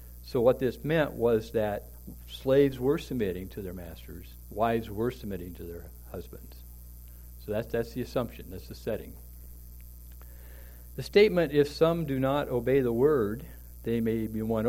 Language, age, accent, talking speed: English, 60-79, American, 160 wpm